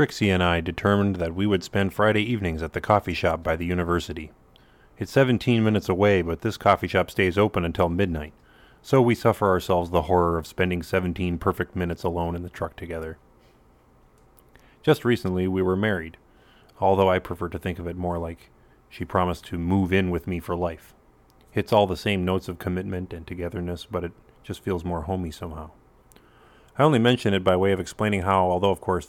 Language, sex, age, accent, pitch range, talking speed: English, male, 30-49, American, 85-105 Hz, 200 wpm